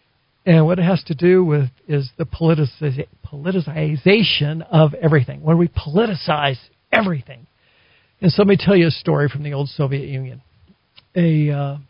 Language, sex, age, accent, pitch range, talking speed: English, male, 50-69, American, 140-180 Hz, 155 wpm